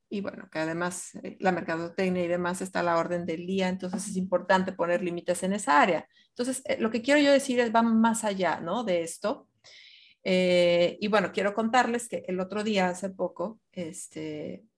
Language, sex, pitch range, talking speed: Spanish, female, 185-230 Hz, 190 wpm